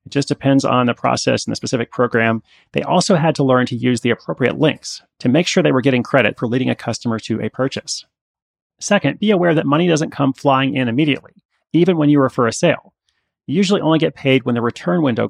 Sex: male